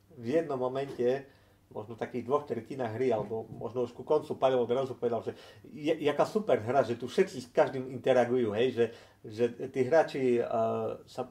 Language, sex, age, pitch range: Slovak, male, 50-69, 120-155 Hz